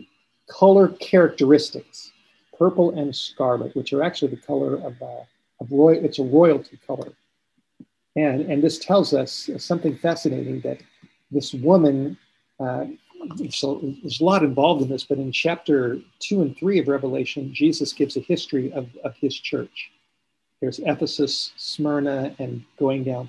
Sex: male